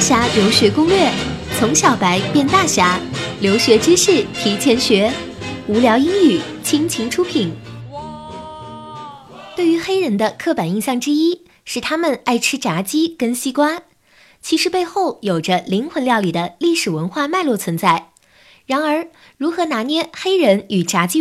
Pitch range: 195-330 Hz